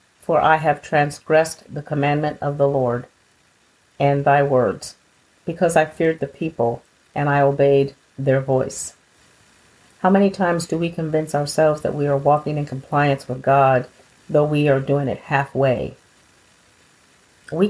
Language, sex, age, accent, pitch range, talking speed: English, female, 50-69, American, 135-160 Hz, 150 wpm